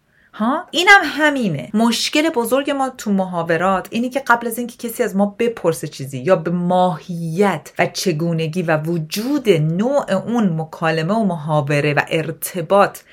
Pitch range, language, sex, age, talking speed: 165-235 Hz, Persian, female, 40-59, 145 wpm